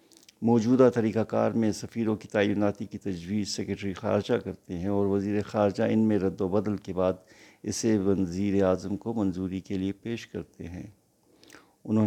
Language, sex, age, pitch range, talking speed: Urdu, male, 50-69, 100-120 Hz, 165 wpm